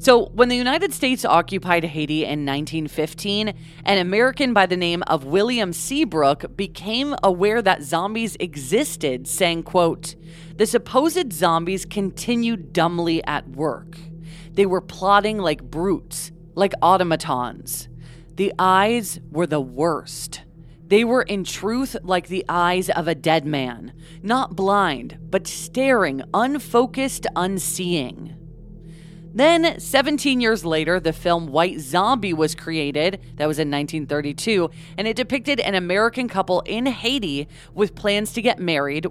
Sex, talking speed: female, 135 wpm